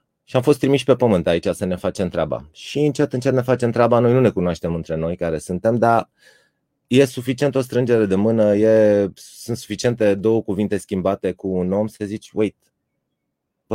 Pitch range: 95-120 Hz